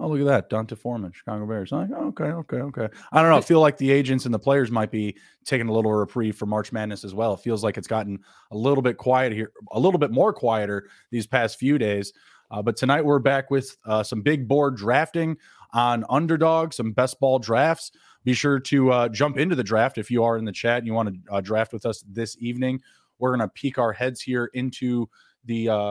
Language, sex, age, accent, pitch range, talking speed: English, male, 20-39, American, 115-140 Hz, 240 wpm